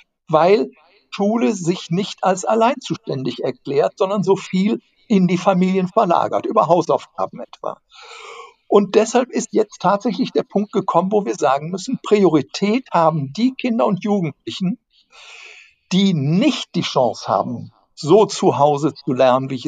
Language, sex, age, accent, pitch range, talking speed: German, male, 60-79, German, 165-220 Hz, 145 wpm